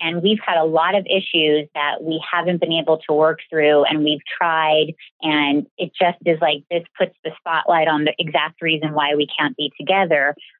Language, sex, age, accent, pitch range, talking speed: English, female, 30-49, American, 155-200 Hz, 205 wpm